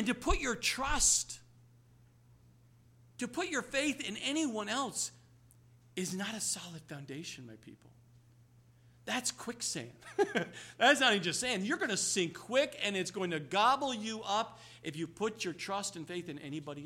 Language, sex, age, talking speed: English, male, 50-69, 165 wpm